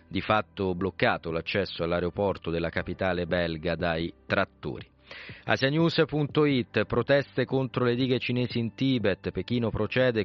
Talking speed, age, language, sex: 115 wpm, 40-59, Italian, male